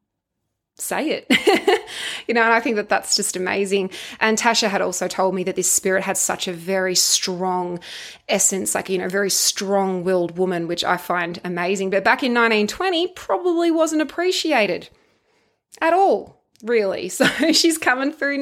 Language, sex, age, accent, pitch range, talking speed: English, female, 20-39, Australian, 185-250 Hz, 165 wpm